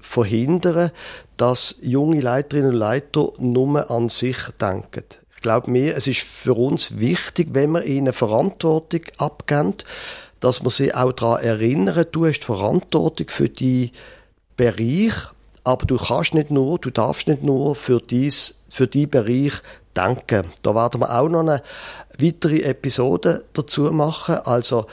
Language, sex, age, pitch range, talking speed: German, male, 50-69, 120-155 Hz, 145 wpm